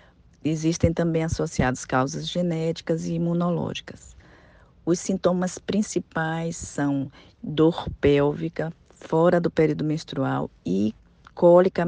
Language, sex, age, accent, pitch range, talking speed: Portuguese, female, 40-59, Brazilian, 135-175 Hz, 95 wpm